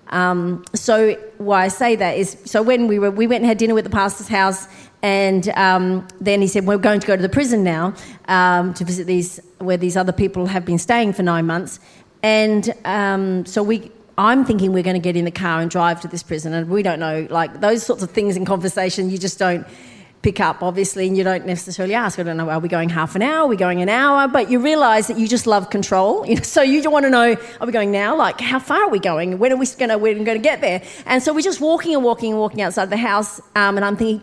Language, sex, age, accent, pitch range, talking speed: English, female, 40-59, Australian, 190-240 Hz, 265 wpm